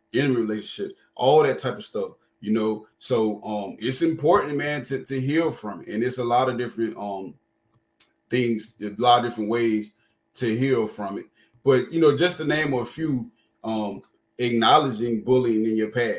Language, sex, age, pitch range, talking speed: English, male, 20-39, 110-135 Hz, 190 wpm